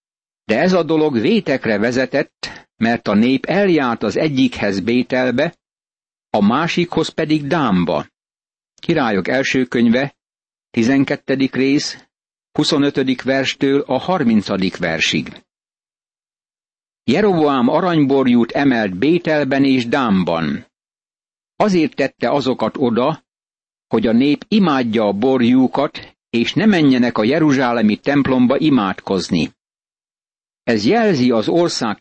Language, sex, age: Hungarian, male, 60-79